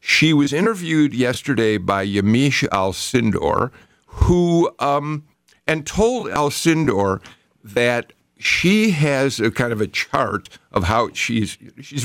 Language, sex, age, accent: English, male, 50-69, American